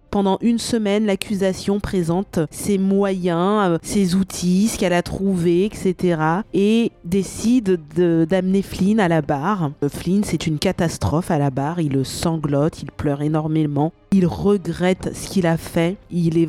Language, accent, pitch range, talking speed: French, French, 175-215 Hz, 155 wpm